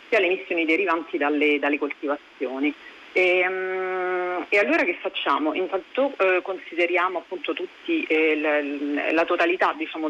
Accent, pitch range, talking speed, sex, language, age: native, 160-195 Hz, 135 wpm, female, Italian, 40-59